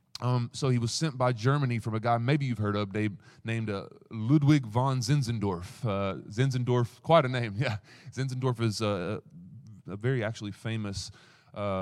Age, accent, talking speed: 30-49, American, 175 wpm